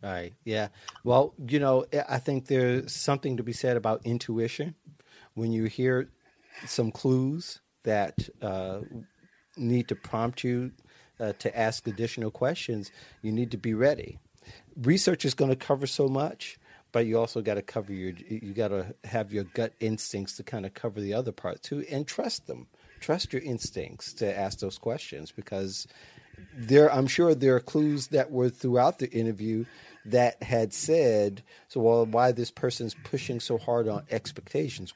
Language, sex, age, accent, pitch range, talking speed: English, male, 40-59, American, 105-130 Hz, 170 wpm